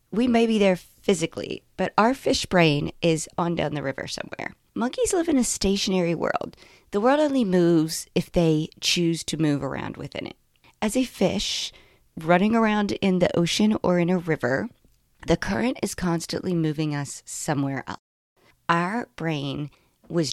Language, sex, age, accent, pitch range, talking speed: English, female, 40-59, American, 155-210 Hz, 165 wpm